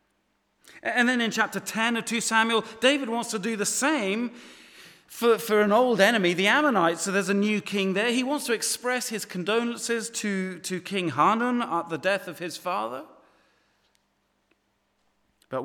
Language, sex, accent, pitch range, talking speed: English, male, British, 150-230 Hz, 170 wpm